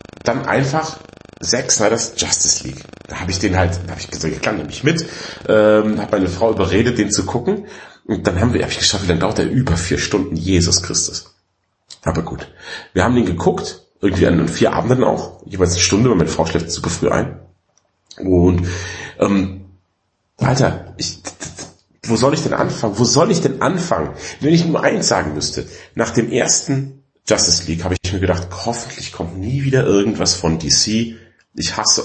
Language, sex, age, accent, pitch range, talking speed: German, male, 40-59, German, 85-110 Hz, 195 wpm